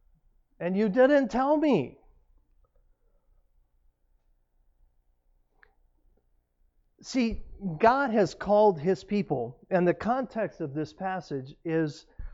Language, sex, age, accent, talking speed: English, male, 40-59, American, 90 wpm